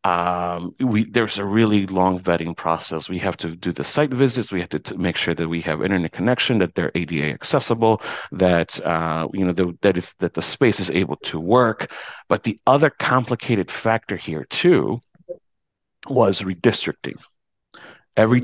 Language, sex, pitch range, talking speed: English, male, 90-110 Hz, 175 wpm